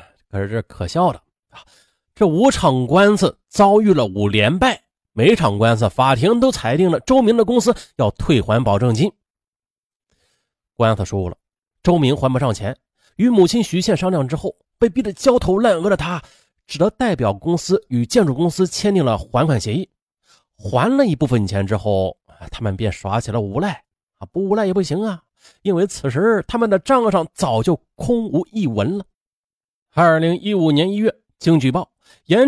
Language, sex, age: Chinese, male, 30-49